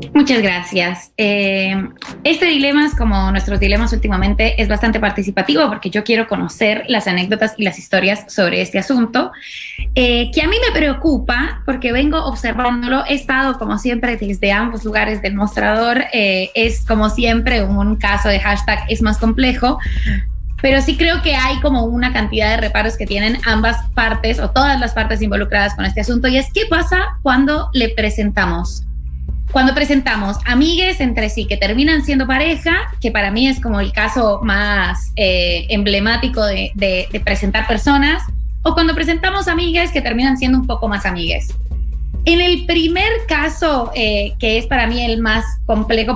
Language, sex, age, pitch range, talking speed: Spanish, female, 20-39, 205-270 Hz, 170 wpm